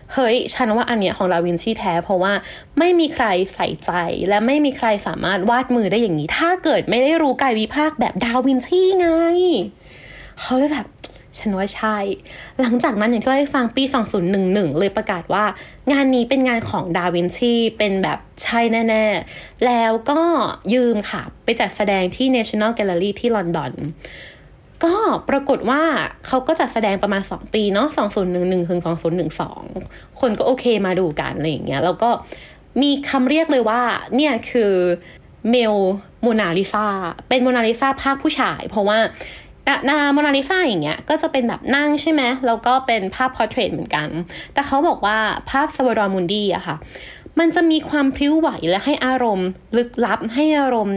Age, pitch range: 20-39, 200-275 Hz